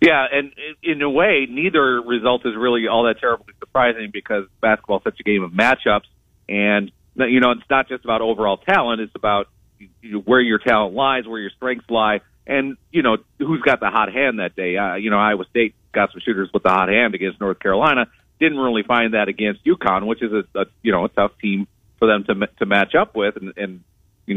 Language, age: English, 40-59